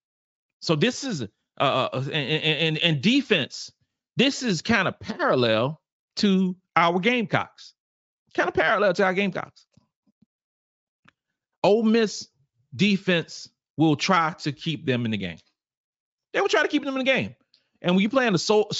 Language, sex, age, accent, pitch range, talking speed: English, male, 40-59, American, 130-185 Hz, 155 wpm